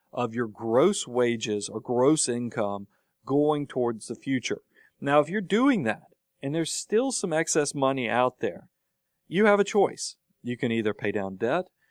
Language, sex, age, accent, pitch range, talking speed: English, male, 40-59, American, 115-155 Hz, 170 wpm